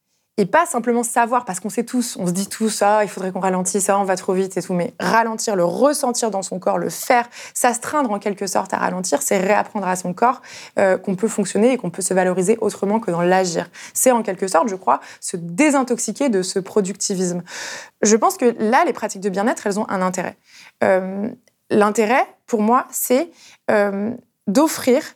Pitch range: 190-240 Hz